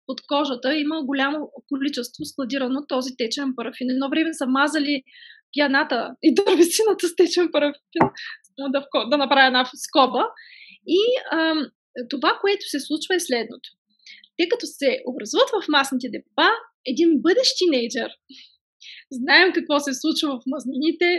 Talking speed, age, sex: 140 wpm, 20-39, female